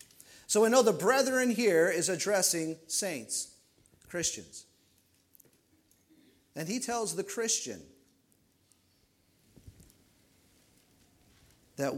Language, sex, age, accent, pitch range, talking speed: English, male, 40-59, American, 135-200 Hz, 80 wpm